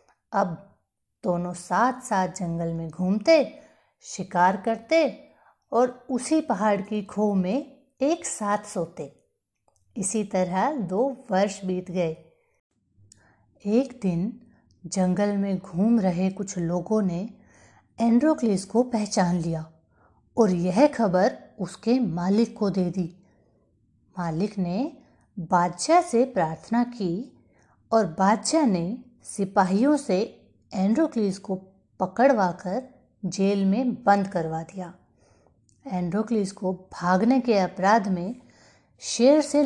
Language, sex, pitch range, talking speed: Hindi, female, 180-235 Hz, 110 wpm